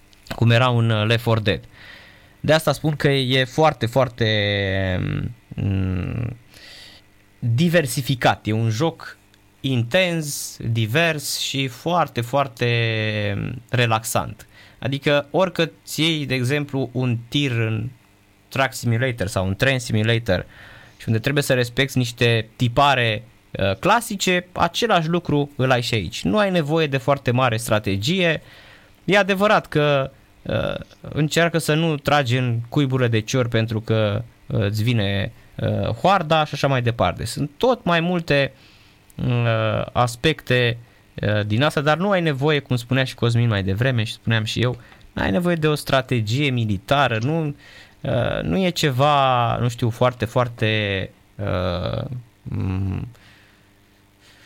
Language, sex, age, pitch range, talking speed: Romanian, male, 20-39, 105-145 Hz, 130 wpm